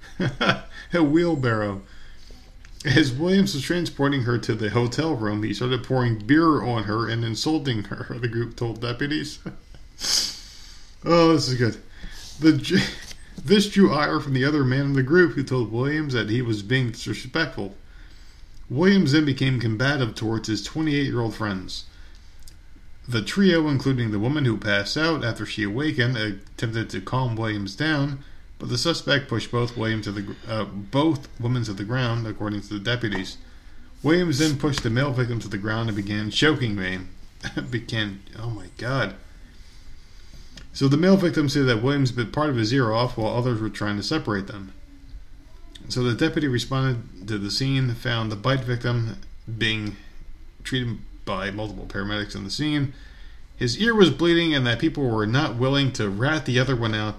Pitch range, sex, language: 100-140 Hz, male, English